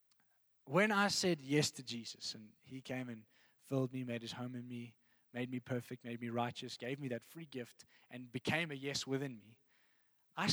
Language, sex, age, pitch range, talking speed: English, male, 20-39, 135-190 Hz, 200 wpm